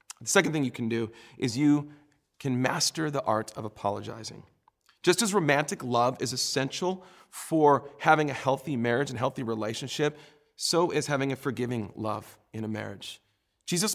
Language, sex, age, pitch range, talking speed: English, male, 40-59, 115-150 Hz, 165 wpm